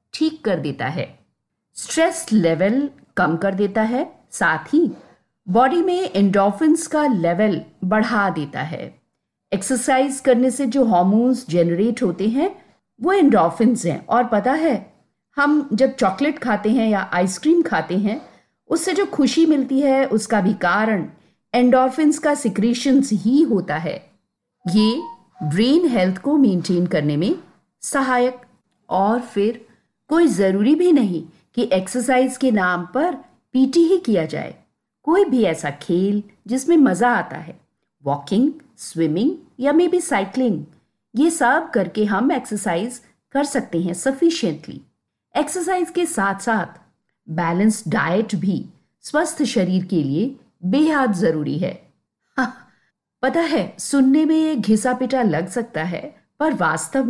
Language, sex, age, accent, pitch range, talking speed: Hindi, female, 50-69, native, 195-290 Hz, 135 wpm